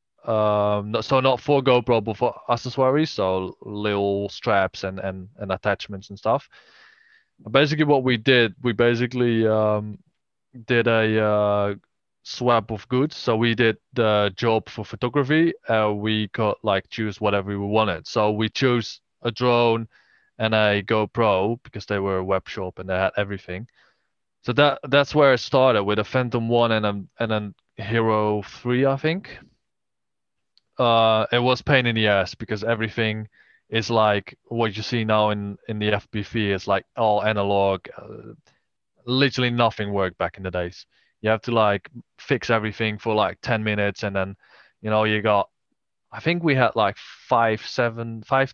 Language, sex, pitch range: English, male, 105-125 Hz